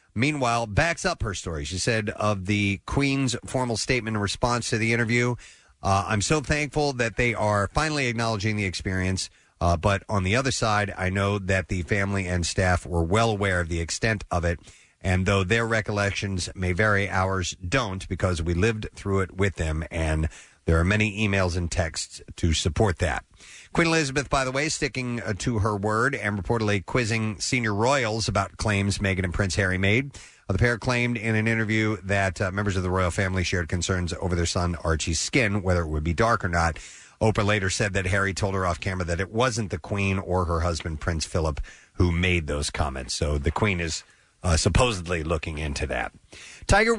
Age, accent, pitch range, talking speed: 40-59, American, 90-115 Hz, 200 wpm